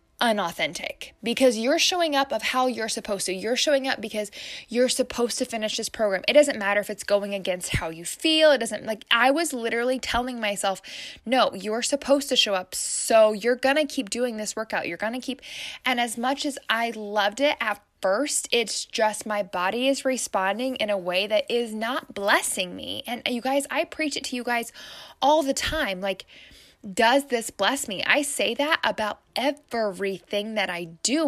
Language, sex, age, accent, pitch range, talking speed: English, female, 10-29, American, 210-285 Hz, 200 wpm